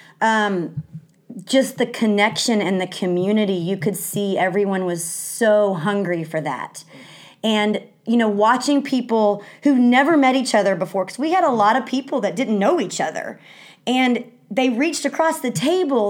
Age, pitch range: 30-49, 190-245 Hz